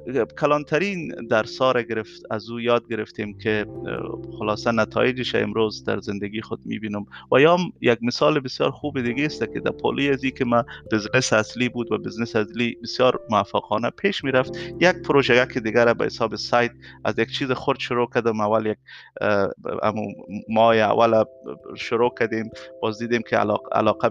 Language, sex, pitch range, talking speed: Persian, male, 110-130 Hz, 155 wpm